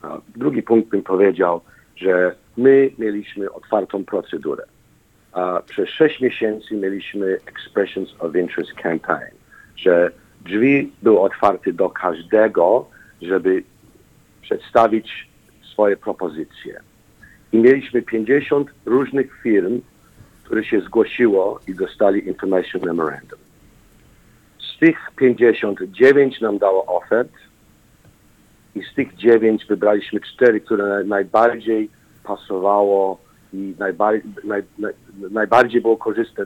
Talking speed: 95 wpm